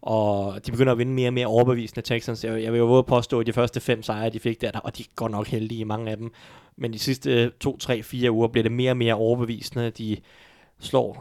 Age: 20-39